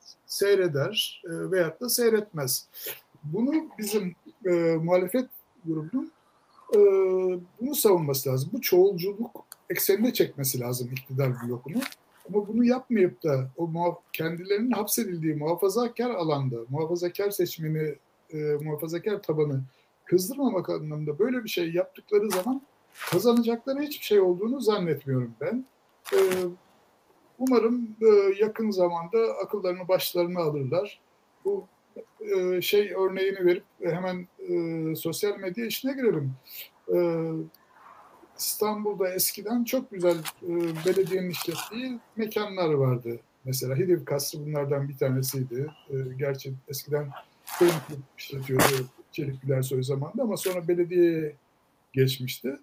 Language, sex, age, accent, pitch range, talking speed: Turkish, male, 60-79, native, 150-215 Hz, 105 wpm